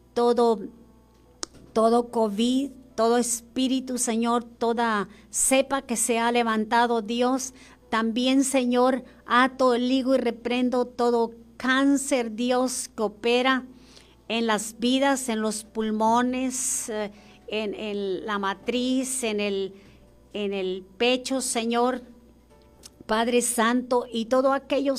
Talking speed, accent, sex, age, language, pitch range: 105 wpm, American, female, 40-59, Spanish, 225-255 Hz